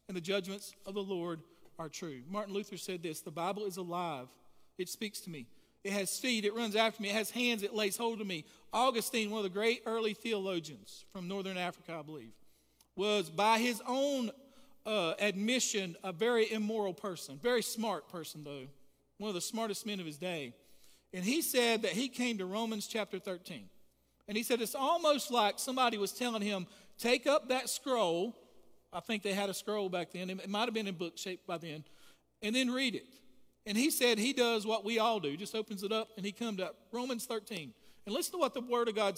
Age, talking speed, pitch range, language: 40-59, 215 wpm, 195-240 Hz, English